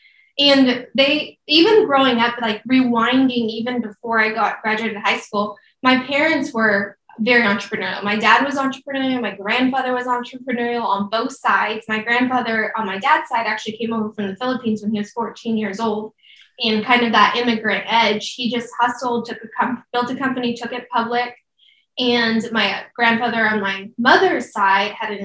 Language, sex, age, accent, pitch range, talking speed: English, female, 10-29, American, 215-250 Hz, 170 wpm